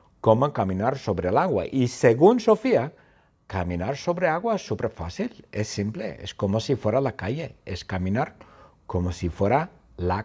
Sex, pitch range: male, 105-175 Hz